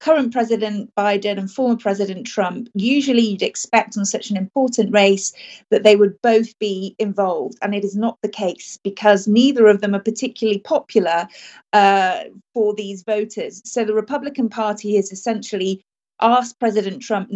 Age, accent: 40-59, British